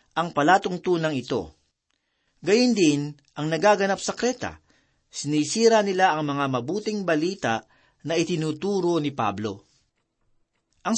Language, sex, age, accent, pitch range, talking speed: Filipino, male, 40-59, native, 140-185 Hz, 110 wpm